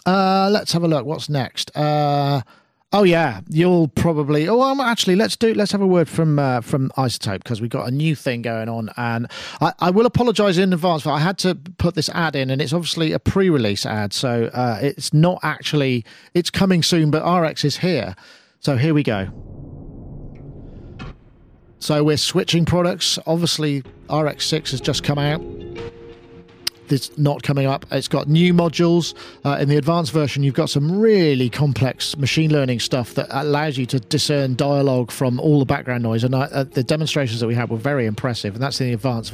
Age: 40-59